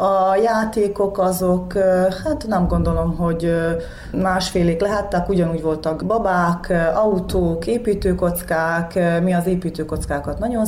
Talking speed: 100 wpm